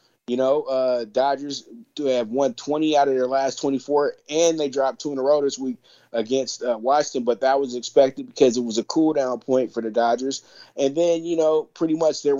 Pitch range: 130-150 Hz